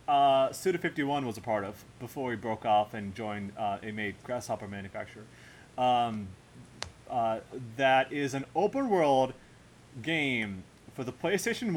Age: 30-49